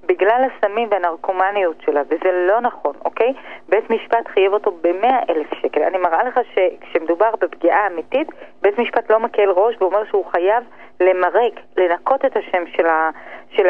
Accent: native